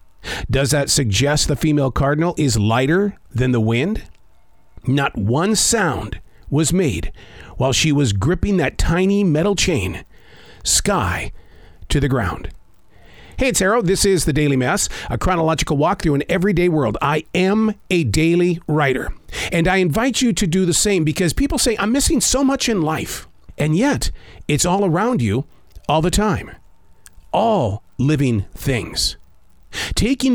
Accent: American